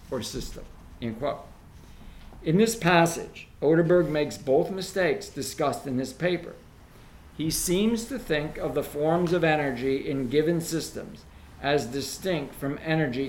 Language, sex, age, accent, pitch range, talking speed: English, male, 50-69, American, 125-155 Hz, 130 wpm